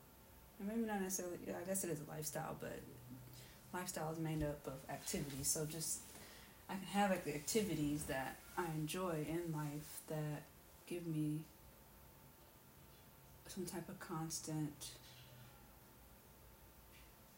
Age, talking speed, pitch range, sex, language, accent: 30-49, 125 wpm, 145-170 Hz, female, English, American